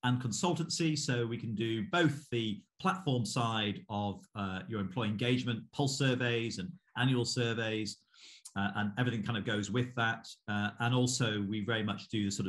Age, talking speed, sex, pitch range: 40-59, 175 wpm, male, 100-125 Hz